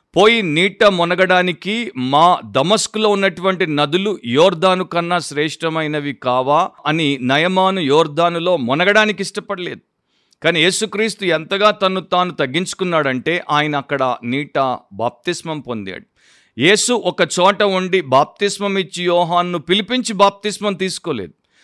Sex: male